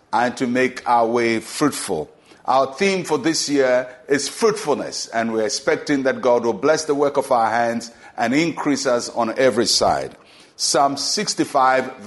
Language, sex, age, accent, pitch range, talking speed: English, male, 50-69, Nigerian, 125-155 Hz, 165 wpm